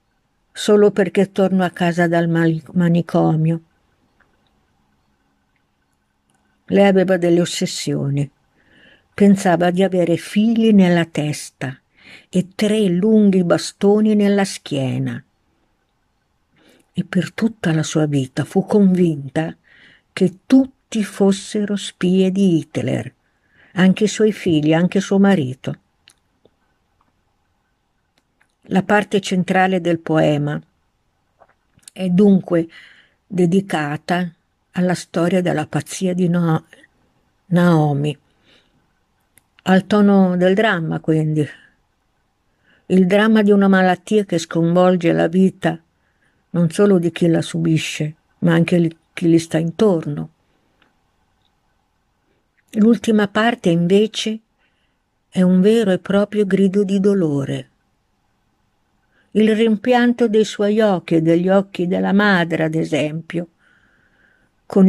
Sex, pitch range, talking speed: female, 155-195 Hz, 100 wpm